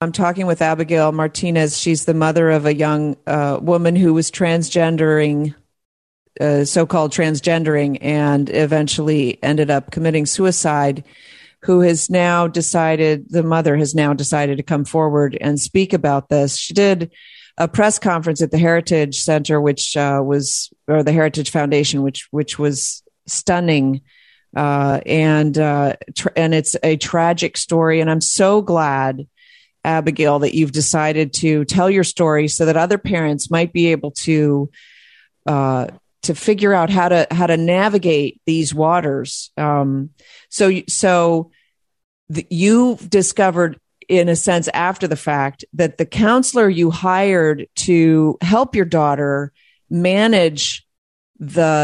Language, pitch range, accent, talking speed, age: English, 150-180 Hz, American, 145 wpm, 40-59